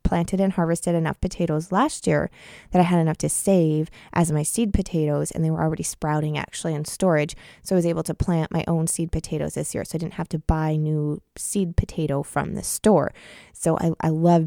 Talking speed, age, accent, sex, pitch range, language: 220 wpm, 20-39, American, female, 155-180 Hz, English